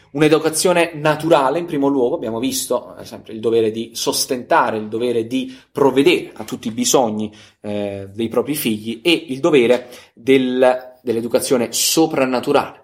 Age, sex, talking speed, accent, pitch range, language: 20-39, male, 140 wpm, native, 110-140 Hz, Italian